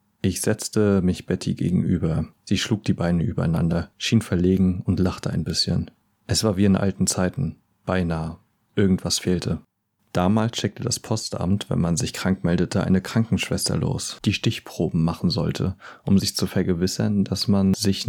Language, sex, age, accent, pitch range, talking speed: German, male, 30-49, German, 90-100 Hz, 160 wpm